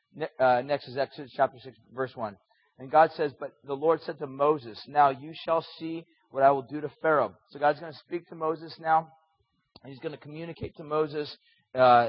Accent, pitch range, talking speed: American, 145-180 Hz, 210 wpm